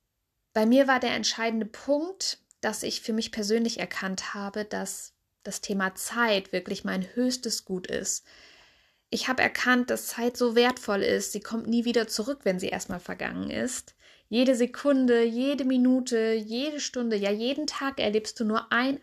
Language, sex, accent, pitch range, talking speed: German, female, German, 200-245 Hz, 165 wpm